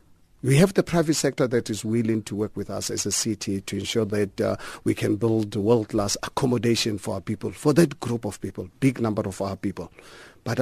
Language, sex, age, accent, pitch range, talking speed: English, male, 50-69, South African, 100-125 Hz, 215 wpm